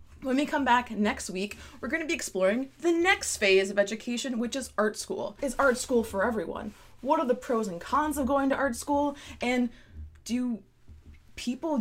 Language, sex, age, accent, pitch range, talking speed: English, female, 20-39, American, 200-260 Hz, 200 wpm